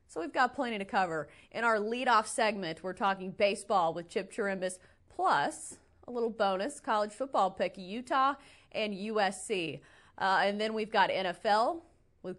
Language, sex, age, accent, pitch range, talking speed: English, female, 30-49, American, 185-220 Hz, 160 wpm